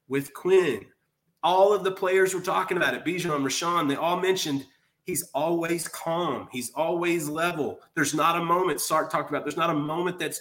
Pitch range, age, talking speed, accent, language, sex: 140-180 Hz, 30-49, 190 wpm, American, English, male